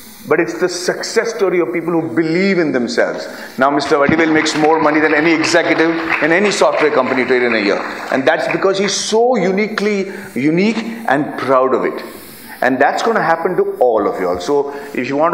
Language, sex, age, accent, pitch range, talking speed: English, male, 40-59, Indian, 135-195 Hz, 205 wpm